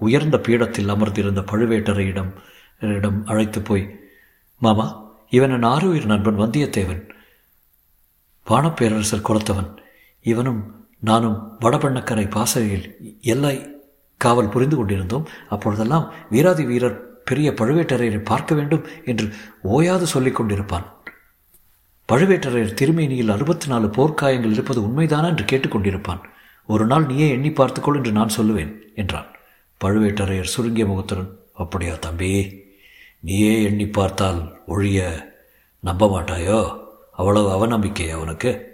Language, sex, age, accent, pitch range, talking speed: Tamil, male, 50-69, native, 100-125 Hz, 100 wpm